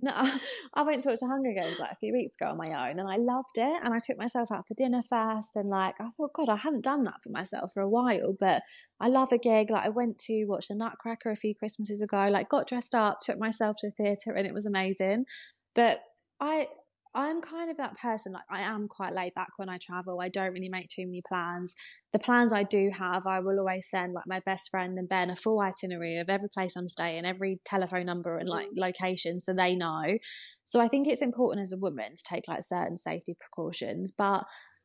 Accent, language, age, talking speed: British, English, 20-39, 245 wpm